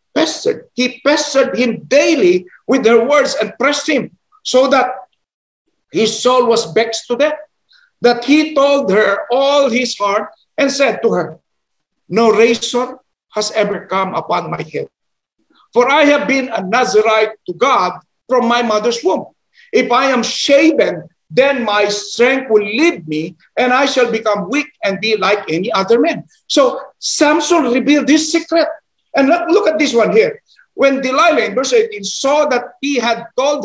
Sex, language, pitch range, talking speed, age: male, English, 225-295 Hz, 165 wpm, 50-69